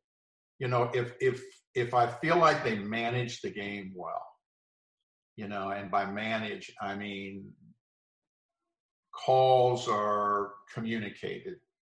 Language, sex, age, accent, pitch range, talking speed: English, male, 50-69, American, 110-130 Hz, 115 wpm